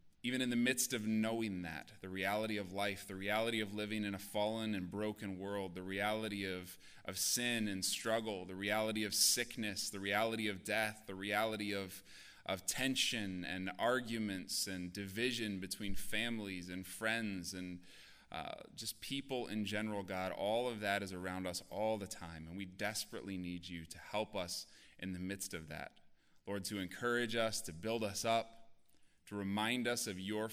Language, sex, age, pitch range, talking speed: English, male, 20-39, 95-115 Hz, 180 wpm